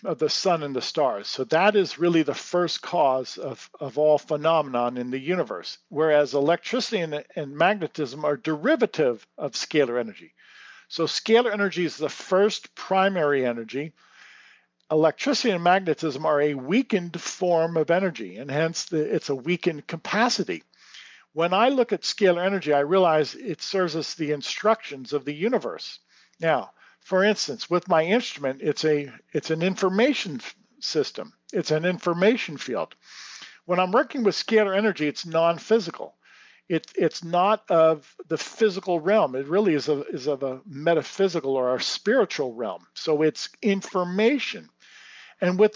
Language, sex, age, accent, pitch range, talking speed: English, male, 50-69, American, 150-200 Hz, 155 wpm